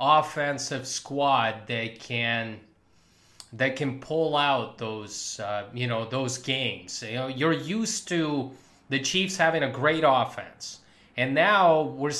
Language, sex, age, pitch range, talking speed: English, male, 30-49, 130-170 Hz, 140 wpm